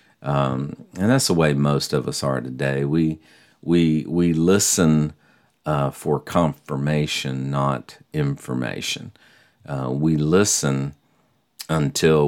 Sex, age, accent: male, 40-59, American